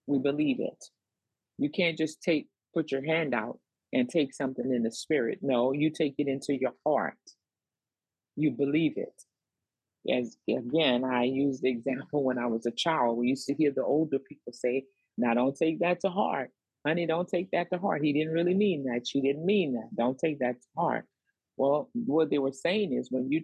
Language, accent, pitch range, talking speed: English, American, 130-160 Hz, 205 wpm